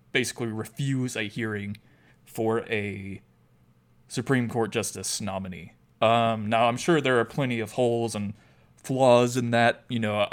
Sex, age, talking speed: male, 20-39, 145 wpm